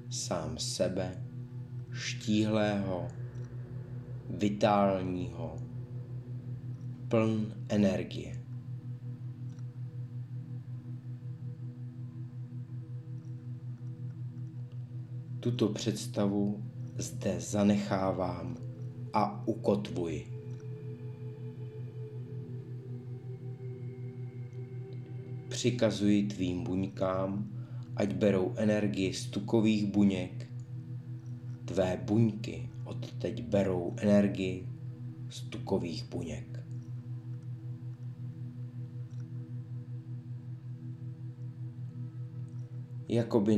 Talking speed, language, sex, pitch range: 40 wpm, Czech, male, 105-125 Hz